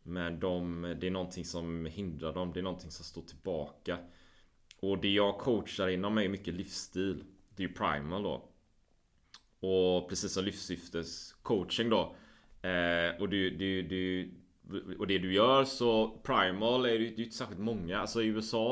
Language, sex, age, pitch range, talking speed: Swedish, male, 30-49, 90-115 Hz, 175 wpm